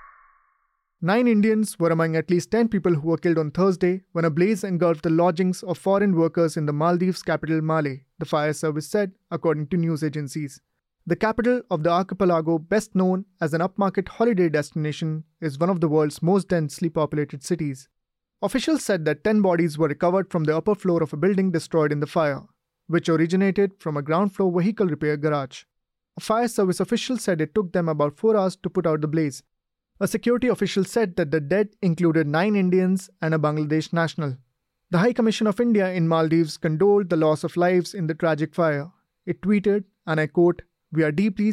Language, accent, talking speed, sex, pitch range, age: English, Indian, 200 wpm, male, 160-195 Hz, 30-49